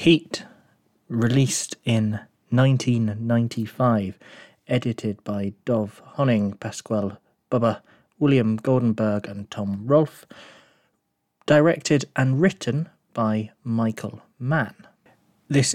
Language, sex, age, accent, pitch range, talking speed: English, male, 30-49, British, 110-135 Hz, 85 wpm